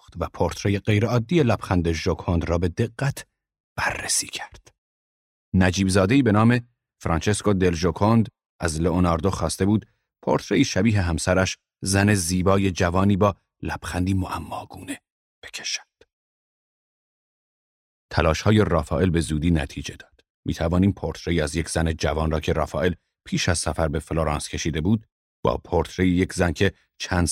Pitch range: 80-100 Hz